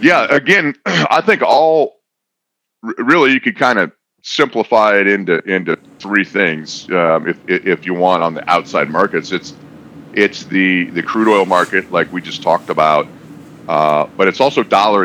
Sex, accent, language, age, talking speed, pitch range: male, American, English, 40-59, 170 wpm, 85-105 Hz